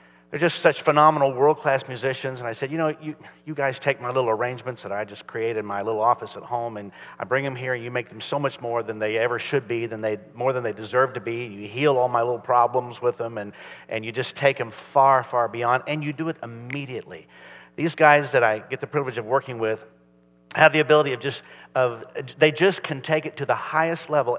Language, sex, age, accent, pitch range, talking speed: English, male, 50-69, American, 115-155 Hz, 245 wpm